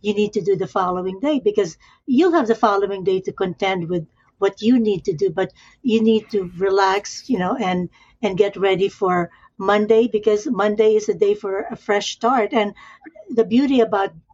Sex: female